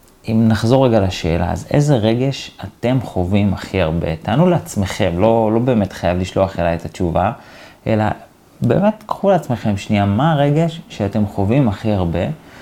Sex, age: male, 30-49